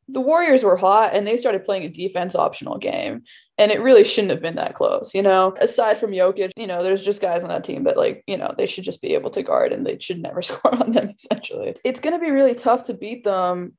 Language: English